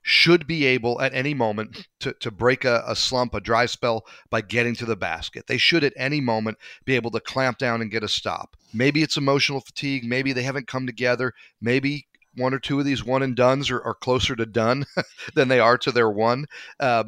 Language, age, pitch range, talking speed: English, 40-59, 120-150 Hz, 225 wpm